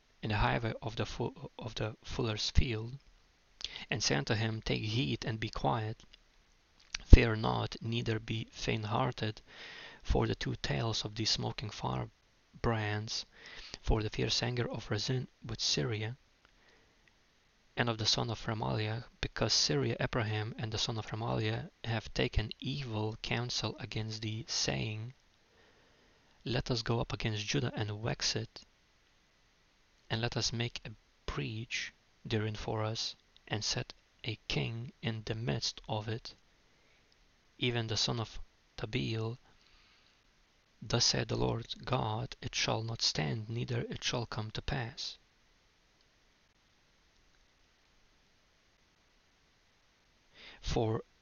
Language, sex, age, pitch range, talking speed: English, male, 20-39, 110-120 Hz, 130 wpm